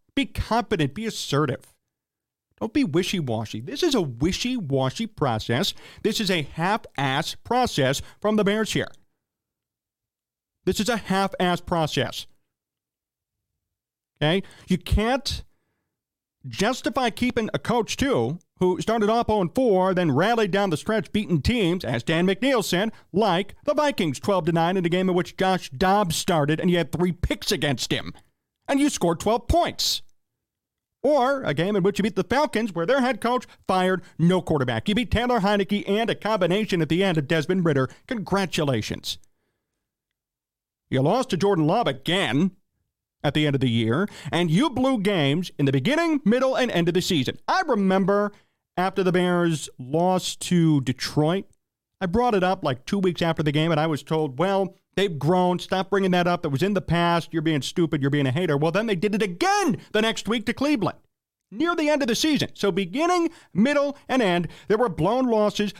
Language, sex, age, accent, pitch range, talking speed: English, male, 40-59, American, 160-220 Hz, 180 wpm